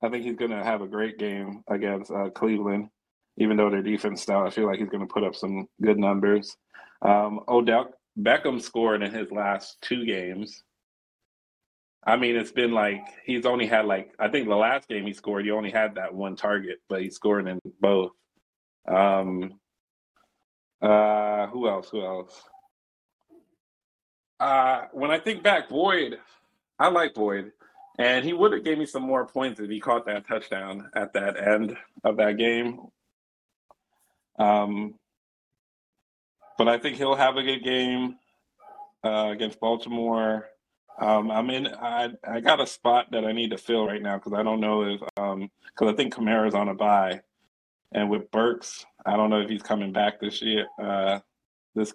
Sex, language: male, English